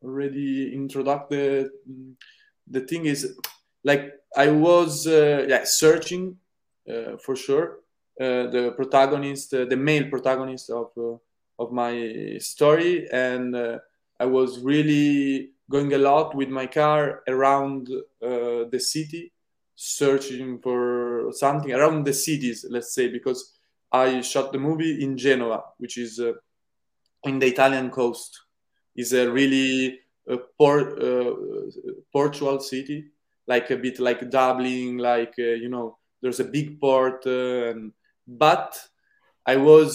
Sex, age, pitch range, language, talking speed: male, 20-39, 125-150 Hz, English, 140 wpm